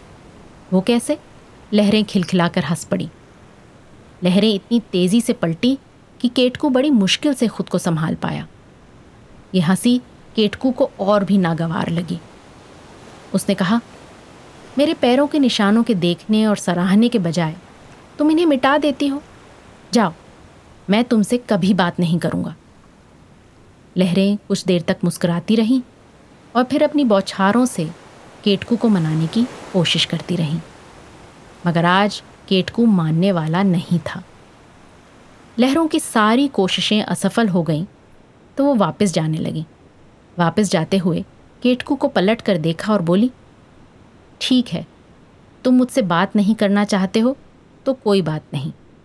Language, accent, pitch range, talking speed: Hindi, native, 180-240 Hz, 140 wpm